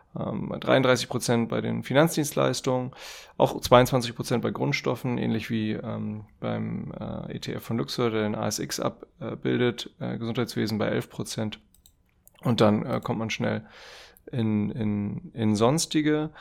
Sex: male